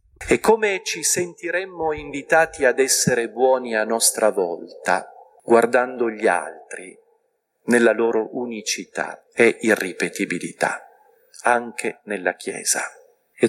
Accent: native